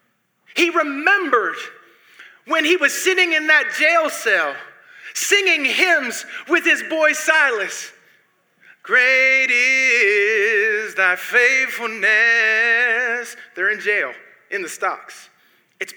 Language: English